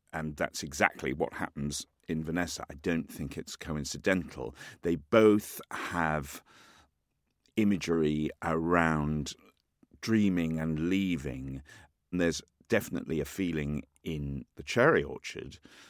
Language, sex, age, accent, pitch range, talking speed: English, male, 50-69, British, 75-95 Hz, 110 wpm